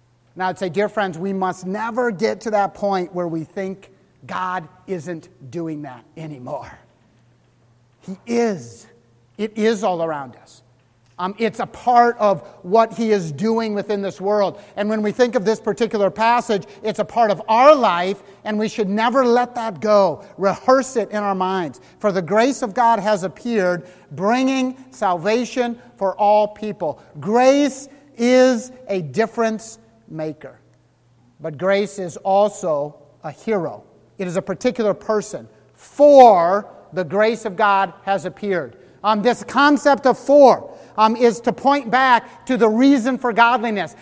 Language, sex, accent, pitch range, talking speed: English, male, American, 190-245 Hz, 155 wpm